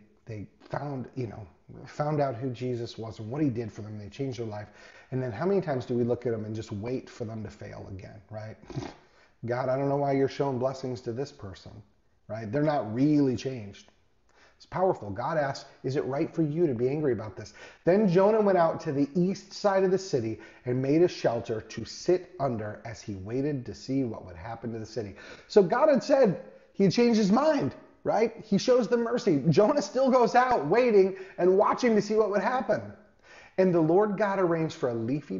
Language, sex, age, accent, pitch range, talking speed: English, male, 30-49, American, 115-180 Hz, 220 wpm